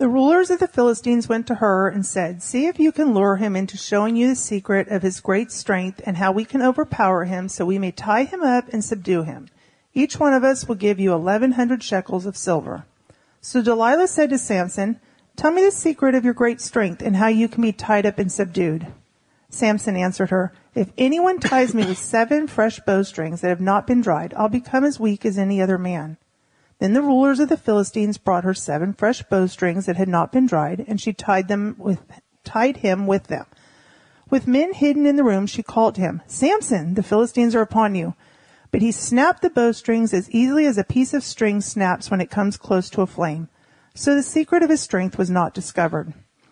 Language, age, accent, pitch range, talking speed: English, 40-59, American, 190-255 Hz, 215 wpm